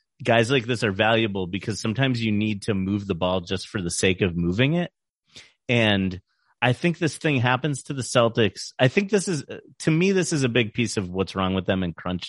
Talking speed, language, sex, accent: 230 wpm, English, male, American